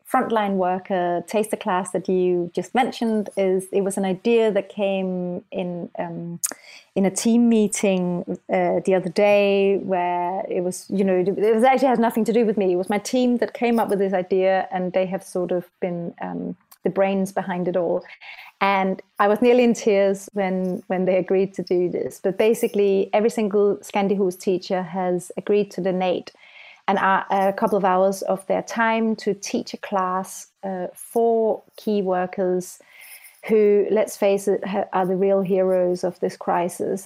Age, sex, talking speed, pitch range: 30-49, female, 180 wpm, 185-210 Hz